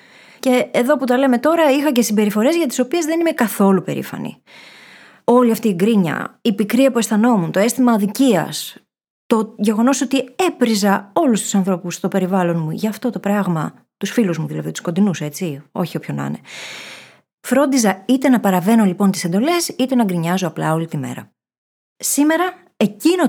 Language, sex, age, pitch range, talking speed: Greek, female, 20-39, 185-250 Hz, 175 wpm